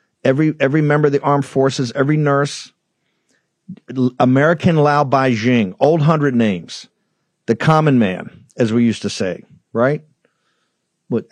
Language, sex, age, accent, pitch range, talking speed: English, male, 50-69, American, 115-150 Hz, 140 wpm